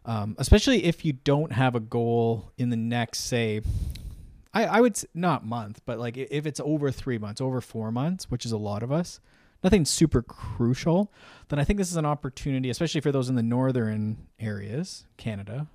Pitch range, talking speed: 110-130 Hz, 200 wpm